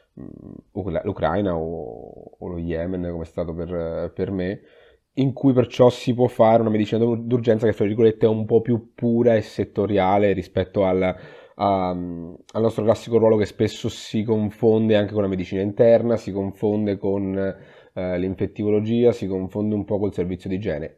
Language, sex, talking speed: Italian, male, 165 wpm